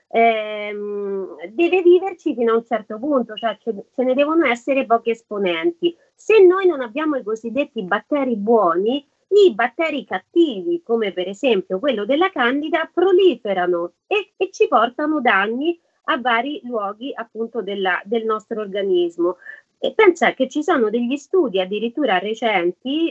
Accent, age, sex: native, 30-49, female